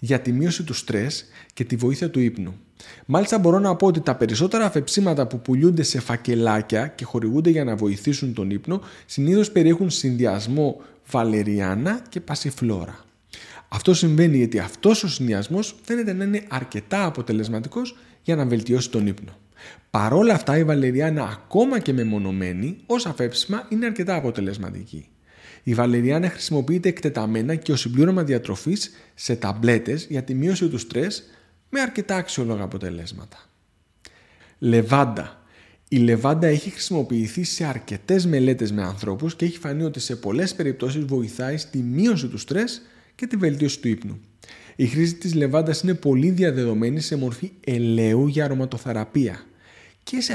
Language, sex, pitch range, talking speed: Greek, male, 115-170 Hz, 145 wpm